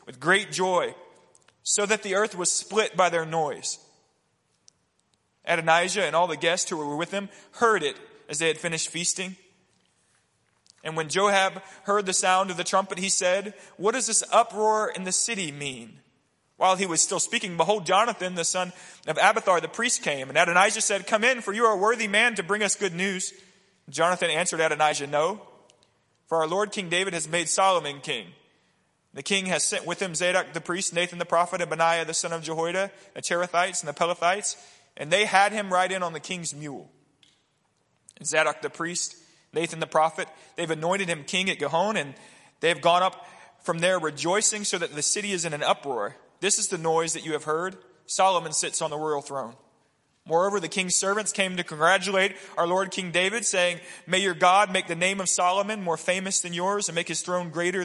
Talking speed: 200 wpm